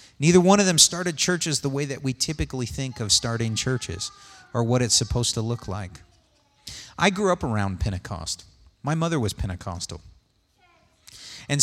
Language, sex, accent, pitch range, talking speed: English, male, American, 105-155 Hz, 165 wpm